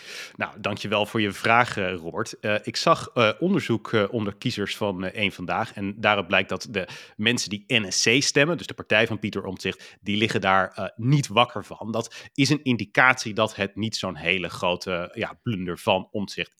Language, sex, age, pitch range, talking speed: Dutch, male, 30-49, 105-155 Hz, 200 wpm